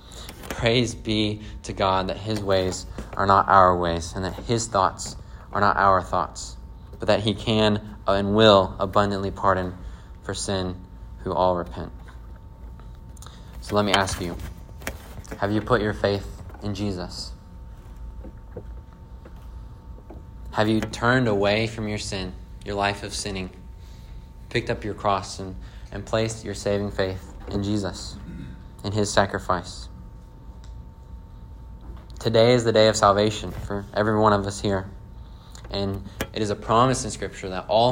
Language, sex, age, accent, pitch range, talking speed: English, male, 20-39, American, 90-110 Hz, 145 wpm